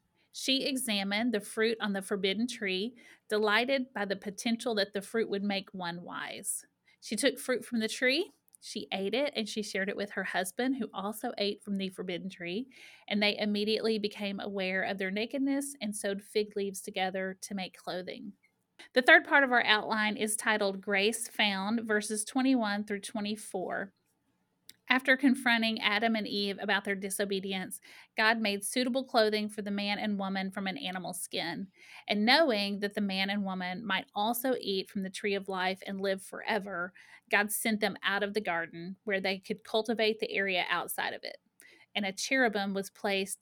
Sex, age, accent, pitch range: female, 30-49, American, 195-225 Hz